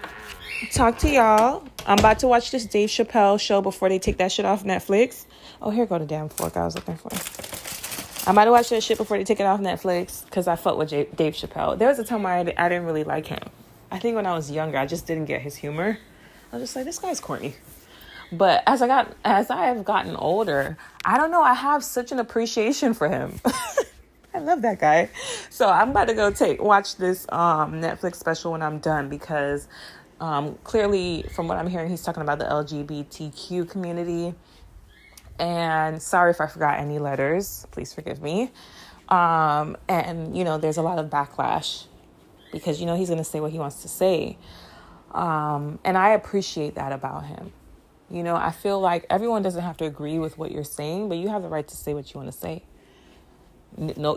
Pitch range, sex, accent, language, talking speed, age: 155-210 Hz, female, American, English, 215 wpm, 20-39